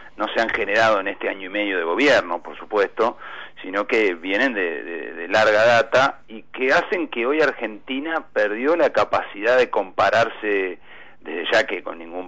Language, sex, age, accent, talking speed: Spanish, male, 40-59, Argentinian, 180 wpm